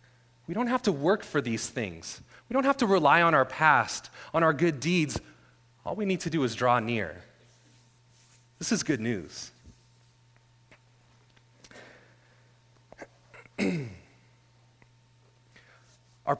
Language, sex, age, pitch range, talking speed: English, male, 30-49, 115-145 Hz, 120 wpm